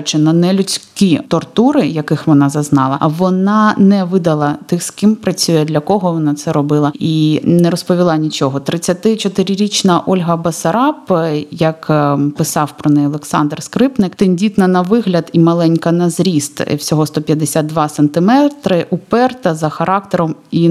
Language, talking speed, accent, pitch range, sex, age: Ukrainian, 135 wpm, native, 155-190 Hz, female, 20-39